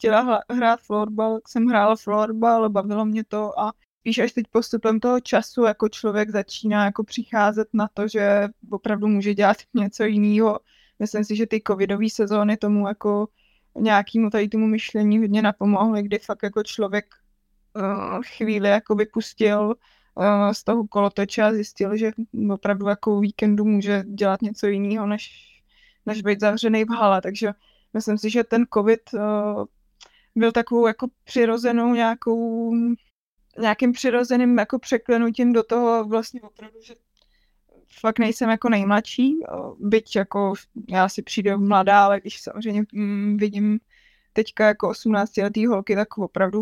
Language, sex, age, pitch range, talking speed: Czech, female, 20-39, 205-225 Hz, 145 wpm